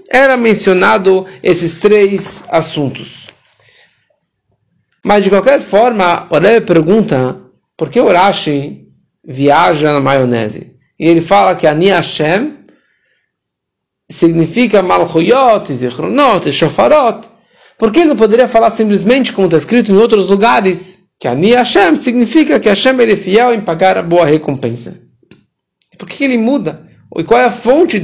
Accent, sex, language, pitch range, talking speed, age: Brazilian, male, English, 165-230 Hz, 140 wpm, 50-69